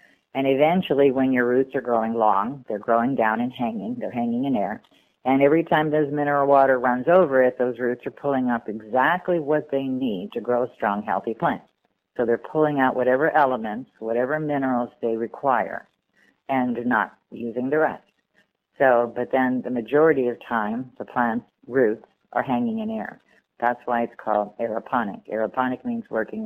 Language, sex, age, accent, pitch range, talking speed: English, female, 50-69, American, 115-145 Hz, 175 wpm